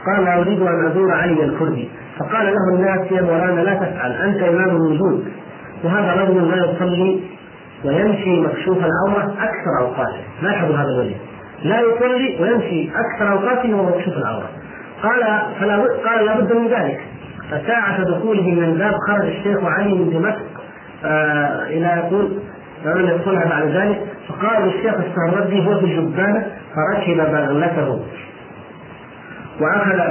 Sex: male